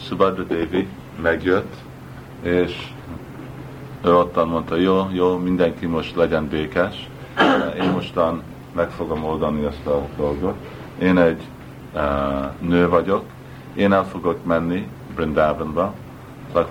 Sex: male